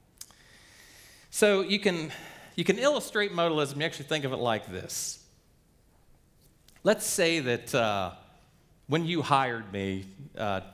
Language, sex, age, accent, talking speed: English, male, 40-59, American, 130 wpm